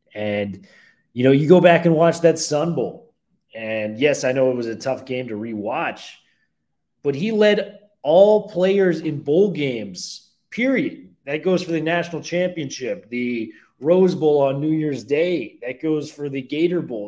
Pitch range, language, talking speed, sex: 120-170 Hz, English, 175 wpm, male